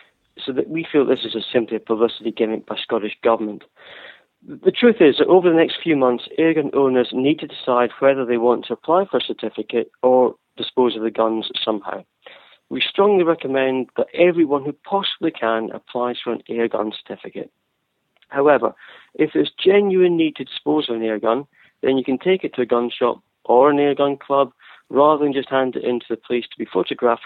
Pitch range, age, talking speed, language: 115-145 Hz, 40-59, 205 wpm, English